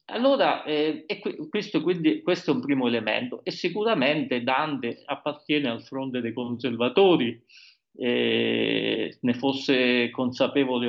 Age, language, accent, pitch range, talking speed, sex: 40-59, Italian, native, 125-155 Hz, 120 wpm, male